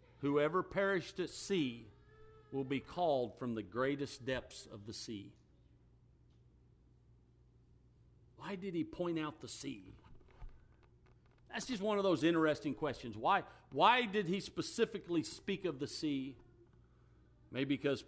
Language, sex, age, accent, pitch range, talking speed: English, male, 50-69, American, 110-150 Hz, 130 wpm